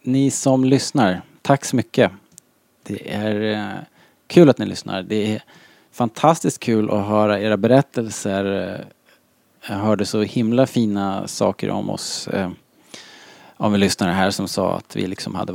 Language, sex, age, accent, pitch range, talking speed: Swedish, male, 20-39, Norwegian, 95-115 Hz, 155 wpm